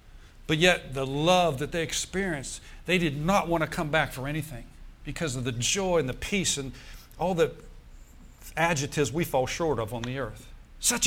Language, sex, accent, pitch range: English, male, American, 115-165 Hz